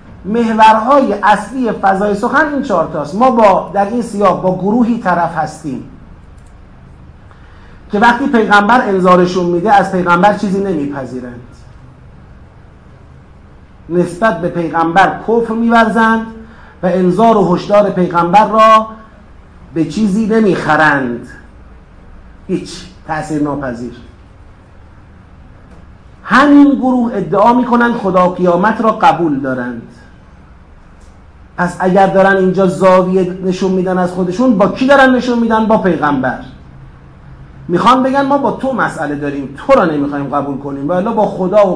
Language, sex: Persian, male